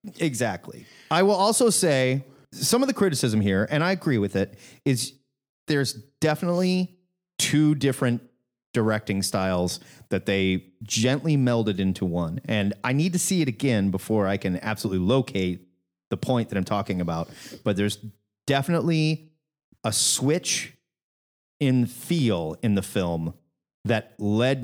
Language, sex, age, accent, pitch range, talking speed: English, male, 30-49, American, 100-145 Hz, 140 wpm